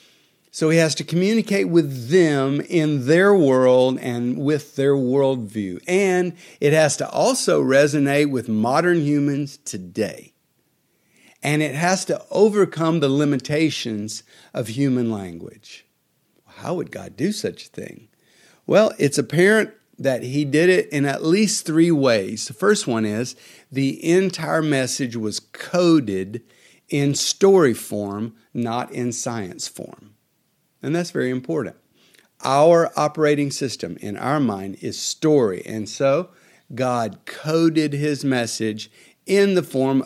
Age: 50-69